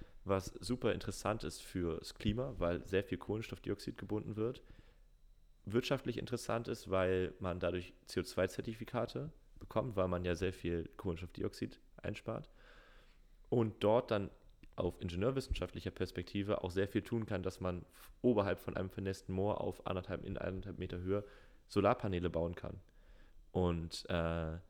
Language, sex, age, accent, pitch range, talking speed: German, male, 30-49, German, 90-105 Hz, 130 wpm